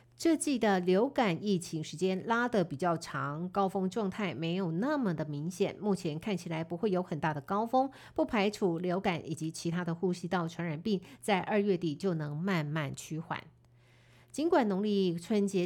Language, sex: Chinese, female